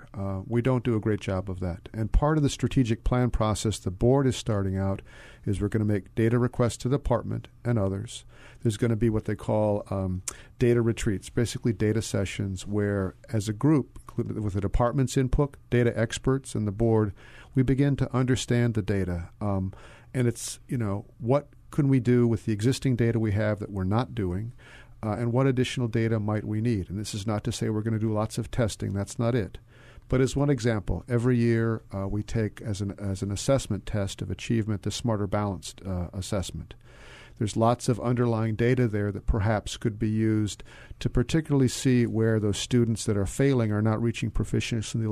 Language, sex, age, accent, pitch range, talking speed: English, male, 50-69, American, 105-125 Hz, 205 wpm